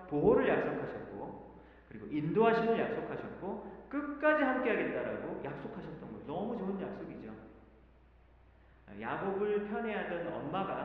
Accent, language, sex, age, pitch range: native, Korean, male, 40-59, 160-230 Hz